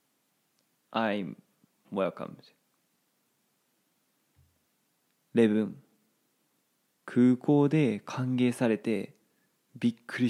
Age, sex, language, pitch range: 20-39, male, Japanese, 110-155 Hz